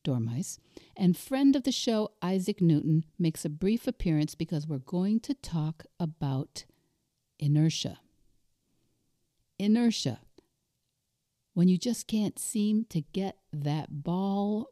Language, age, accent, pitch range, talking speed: English, 50-69, American, 150-195 Hz, 120 wpm